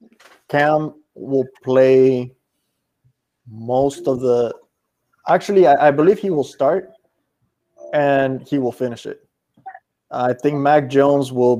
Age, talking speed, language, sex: 20-39, 120 wpm, English, male